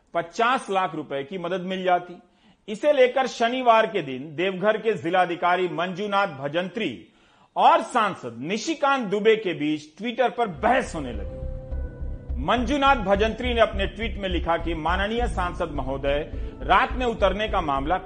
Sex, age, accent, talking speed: male, 40-59, native, 145 wpm